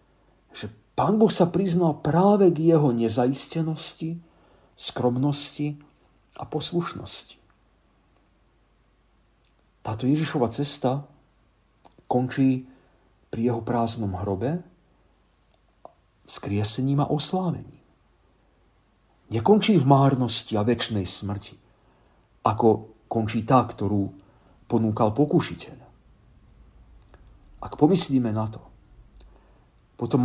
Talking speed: 80 wpm